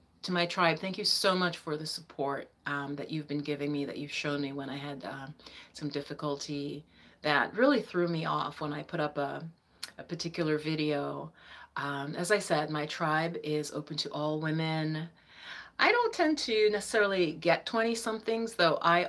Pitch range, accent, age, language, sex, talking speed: 150-180 Hz, American, 30-49, English, female, 185 wpm